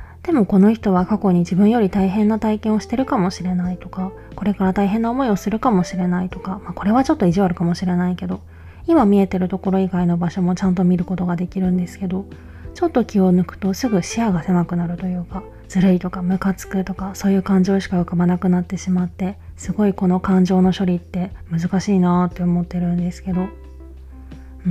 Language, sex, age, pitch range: Japanese, female, 20-39, 180-205 Hz